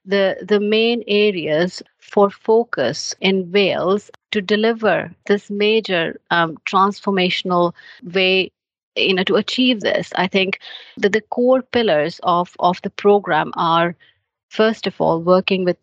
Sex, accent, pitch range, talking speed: female, Indian, 180-210 Hz, 135 wpm